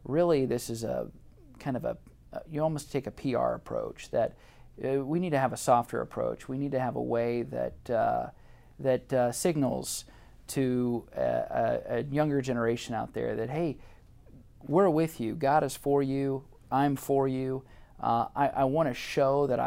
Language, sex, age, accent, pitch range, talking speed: English, male, 40-59, American, 125-145 Hz, 180 wpm